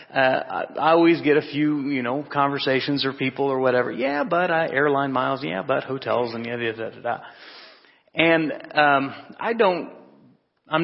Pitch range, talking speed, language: 135-165 Hz, 170 wpm, English